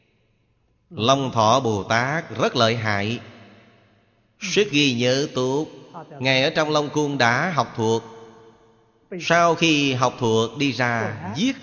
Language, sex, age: Vietnamese, male, 30-49